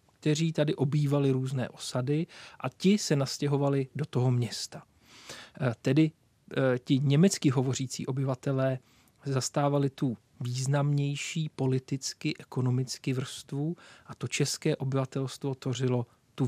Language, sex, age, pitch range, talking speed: Czech, male, 40-59, 130-155 Hz, 105 wpm